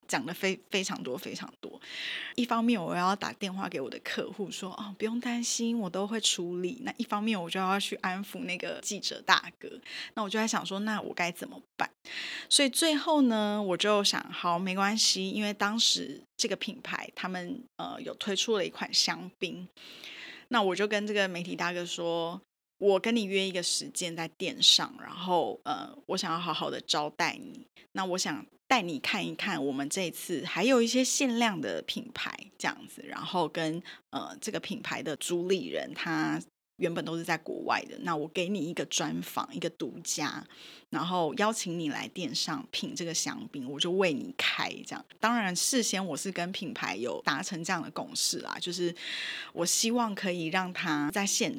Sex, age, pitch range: female, 10-29, 175-225 Hz